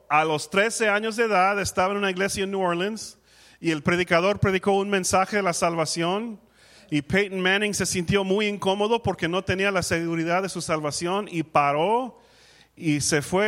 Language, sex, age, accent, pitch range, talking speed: English, male, 40-59, American, 165-200 Hz, 185 wpm